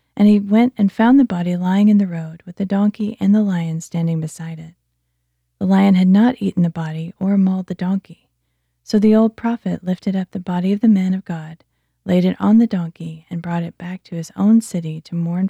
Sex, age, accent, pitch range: female, 30-49, American, 165-200 Hz